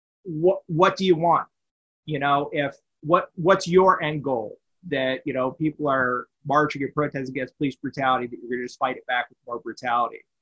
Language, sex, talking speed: English, male, 200 wpm